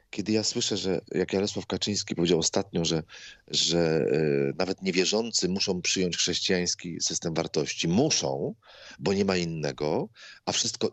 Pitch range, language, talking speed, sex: 90-120 Hz, Polish, 135 wpm, male